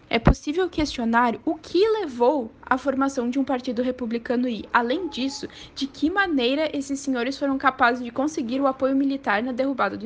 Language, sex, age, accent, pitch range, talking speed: English, female, 10-29, Brazilian, 230-275 Hz, 180 wpm